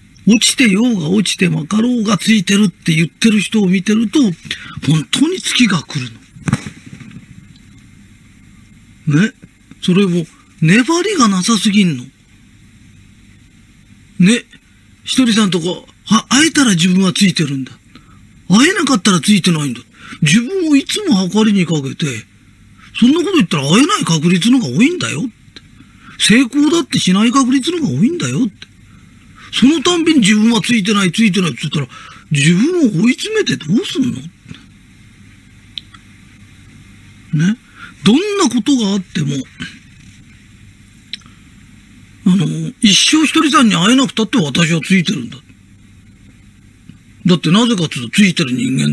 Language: Japanese